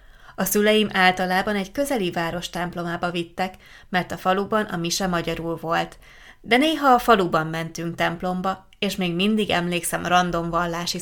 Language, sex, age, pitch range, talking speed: Hungarian, female, 20-39, 165-195 Hz, 145 wpm